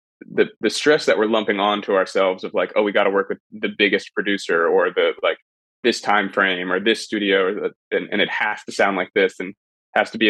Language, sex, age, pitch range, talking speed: English, male, 20-39, 95-115 Hz, 250 wpm